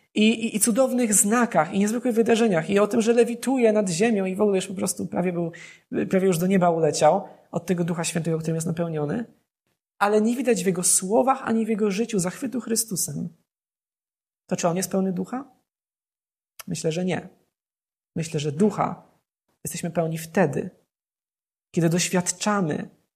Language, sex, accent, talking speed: Polish, male, native, 165 wpm